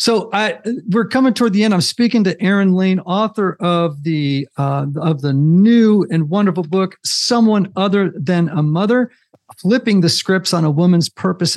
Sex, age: male, 50-69